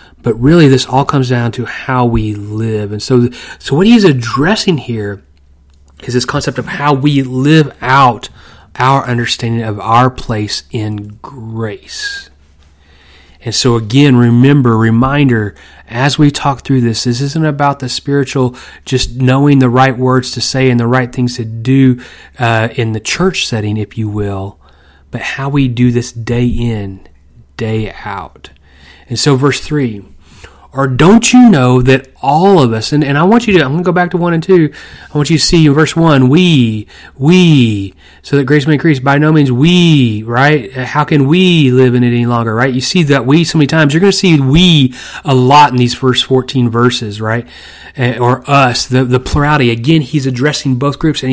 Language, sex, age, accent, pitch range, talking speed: English, male, 30-49, American, 115-145 Hz, 190 wpm